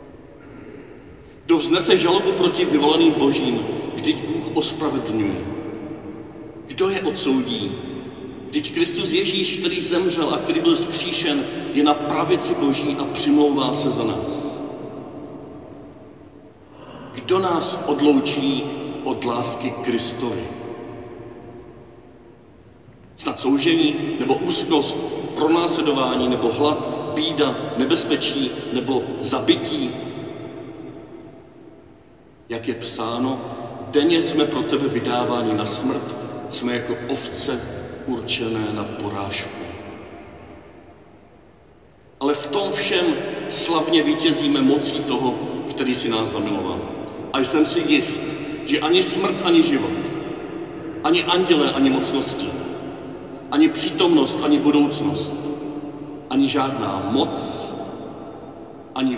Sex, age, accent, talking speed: male, 40-59, native, 95 wpm